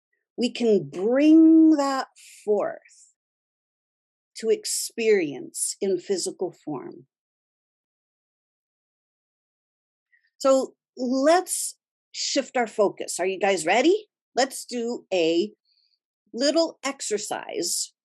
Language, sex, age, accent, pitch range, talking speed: English, female, 50-69, American, 190-315 Hz, 80 wpm